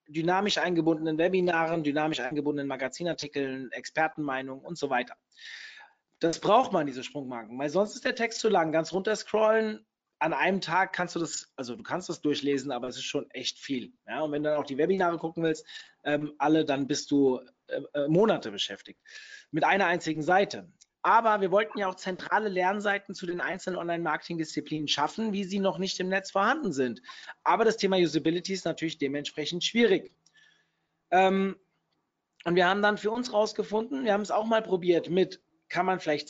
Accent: German